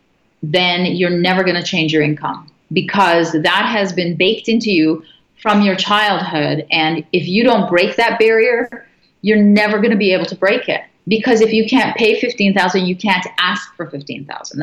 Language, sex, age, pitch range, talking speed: English, female, 30-49, 175-215 Hz, 185 wpm